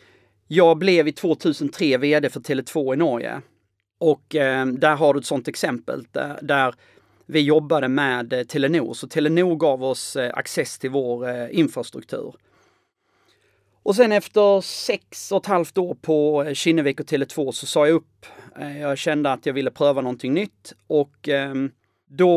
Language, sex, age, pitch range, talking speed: English, male, 30-49, 130-170 Hz, 170 wpm